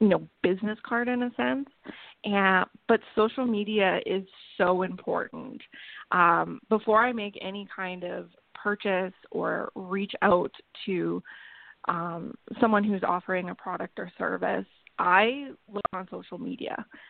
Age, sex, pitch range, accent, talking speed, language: 20-39, female, 185-225 Hz, American, 135 wpm, English